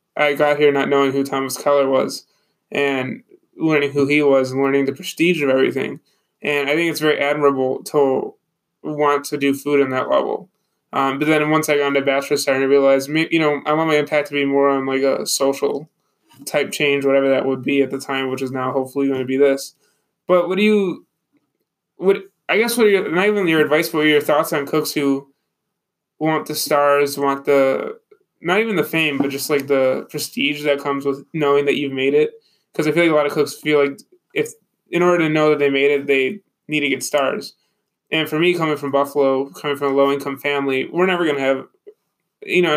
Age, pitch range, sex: 20-39, 140-170 Hz, male